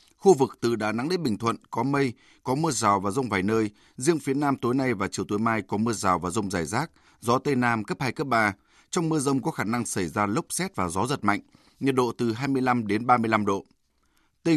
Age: 20-39